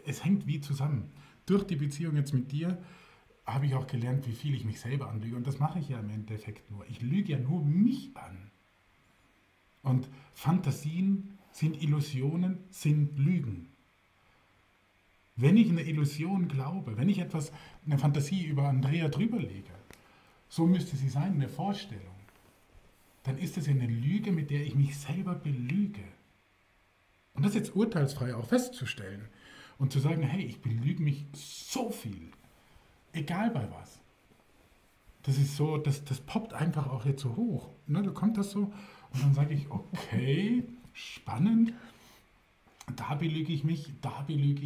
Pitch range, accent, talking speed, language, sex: 120-160 Hz, German, 155 wpm, German, male